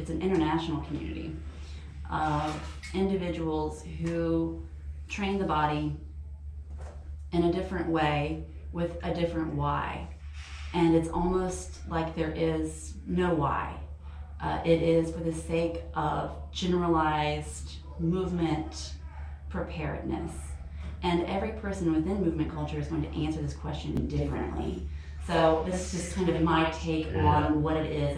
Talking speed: 130 wpm